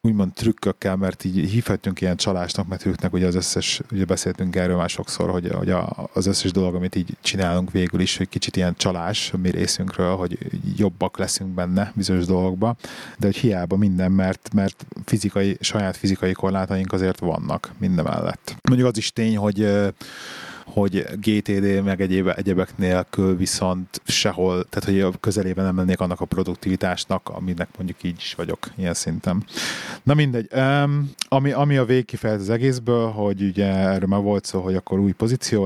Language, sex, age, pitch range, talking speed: Hungarian, male, 30-49, 95-110 Hz, 170 wpm